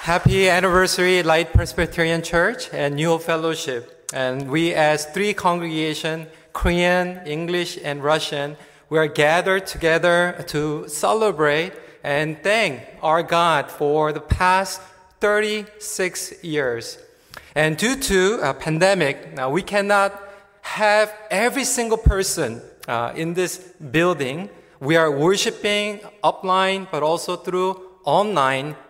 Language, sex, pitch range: Korean, male, 155-195 Hz